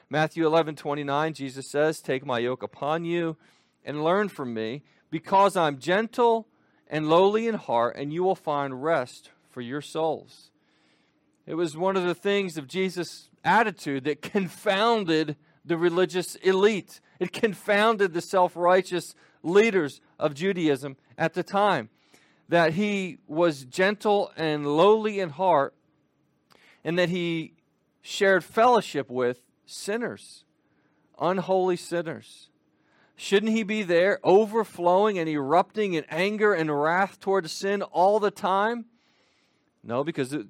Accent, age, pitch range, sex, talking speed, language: American, 40-59, 140-190 Hz, male, 135 wpm, English